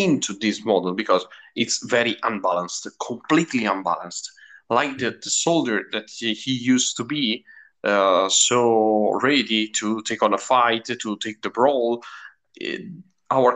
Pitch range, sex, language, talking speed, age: 110-135 Hz, male, English, 145 wpm, 30-49